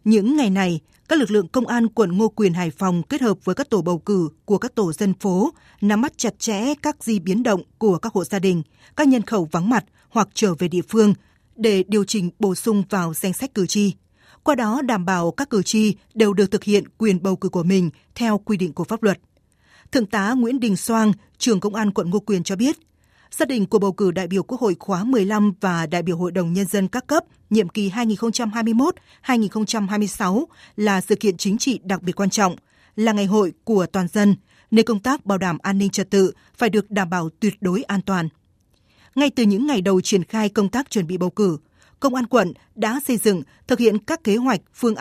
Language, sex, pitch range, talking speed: Vietnamese, female, 190-225 Hz, 230 wpm